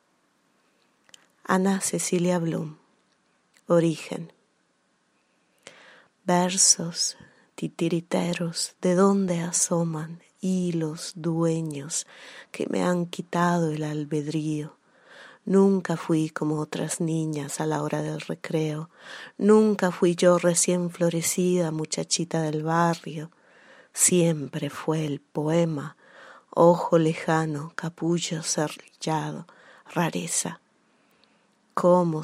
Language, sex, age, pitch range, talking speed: Italian, female, 30-49, 155-180 Hz, 85 wpm